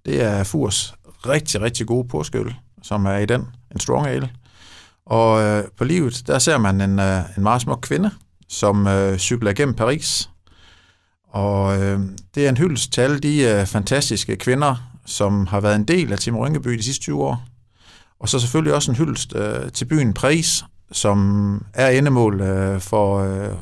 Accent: native